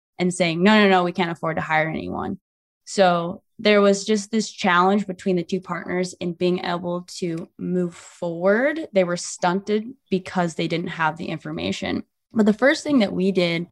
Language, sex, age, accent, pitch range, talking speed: English, female, 20-39, American, 170-185 Hz, 190 wpm